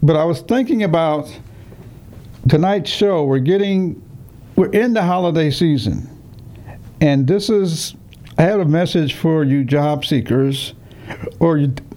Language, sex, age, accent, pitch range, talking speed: English, male, 60-79, American, 120-160 Hz, 130 wpm